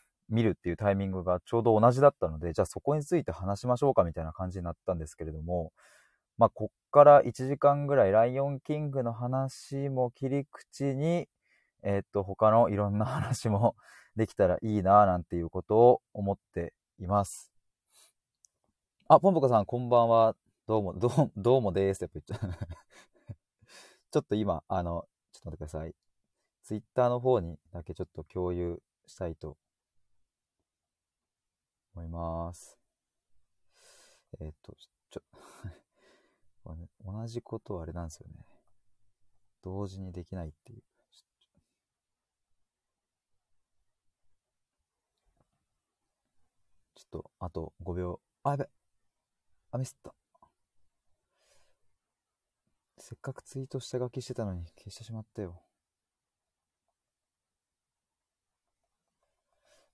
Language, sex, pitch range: Japanese, male, 90-120 Hz